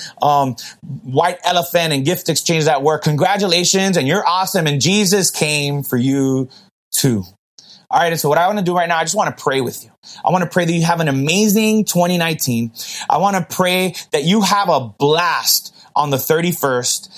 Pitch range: 135-185 Hz